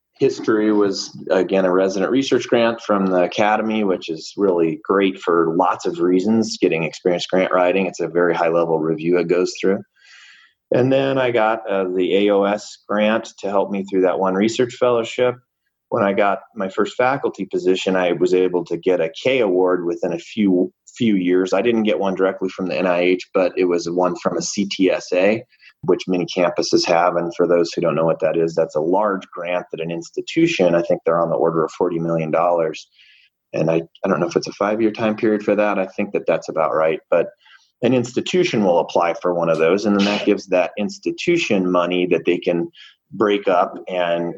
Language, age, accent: English, 30-49, American